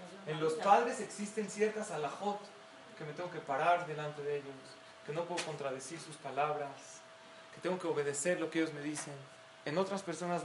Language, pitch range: Spanish, 170-215 Hz